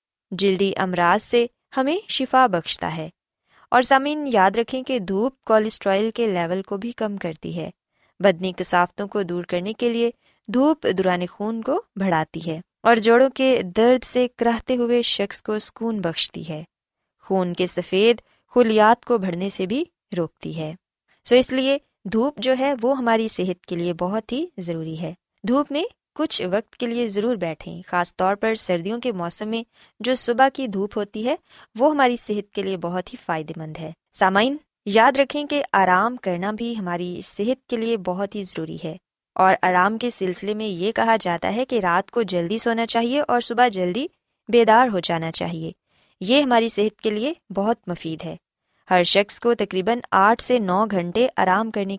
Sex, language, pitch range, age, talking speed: female, Urdu, 180-245 Hz, 20-39, 180 wpm